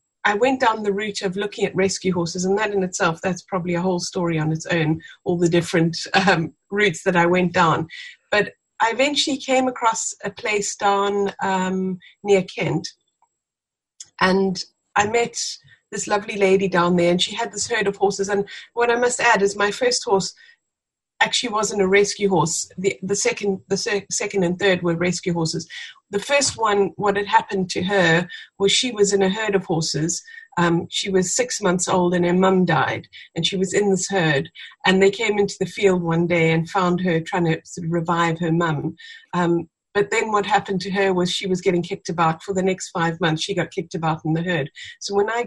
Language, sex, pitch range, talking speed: English, female, 175-205 Hz, 205 wpm